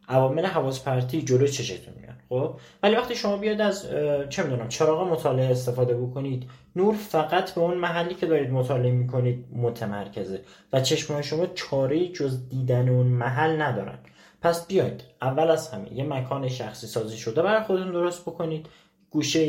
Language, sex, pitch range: Persian, male, 130-180 Hz